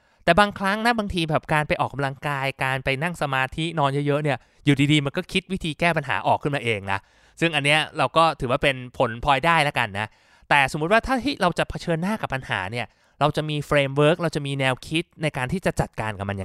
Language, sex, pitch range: Thai, male, 120-165 Hz